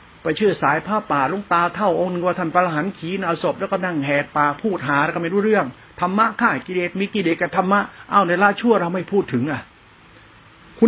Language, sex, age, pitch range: Thai, male, 60-79, 150-200 Hz